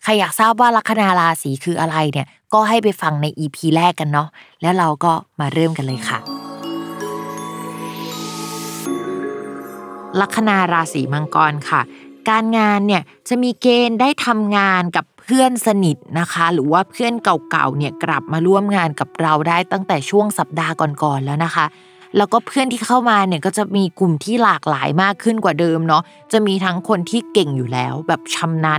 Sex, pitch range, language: female, 155-210 Hz, Thai